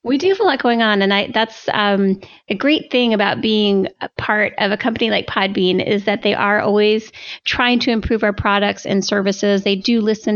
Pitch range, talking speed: 195-230 Hz, 215 wpm